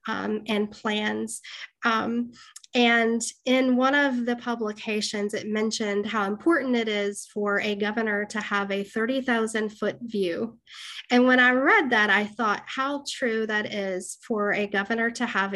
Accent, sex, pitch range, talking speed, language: American, female, 210-245 Hz, 160 wpm, English